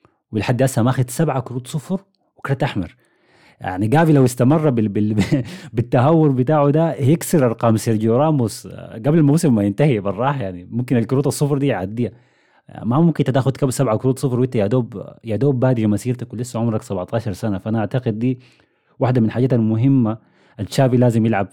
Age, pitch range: 30-49, 110-140 Hz